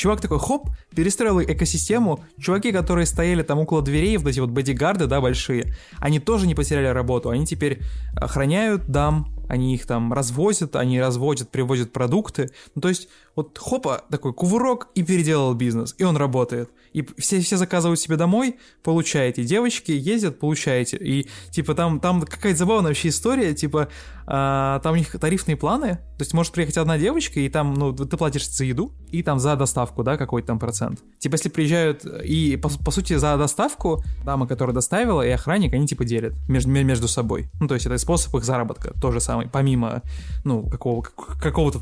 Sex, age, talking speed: male, 20-39, 185 wpm